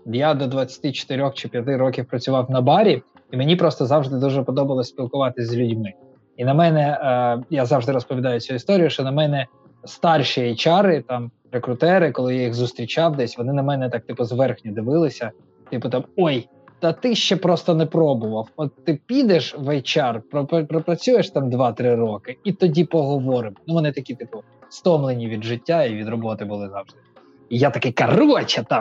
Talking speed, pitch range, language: 175 wpm, 120-160 Hz, Ukrainian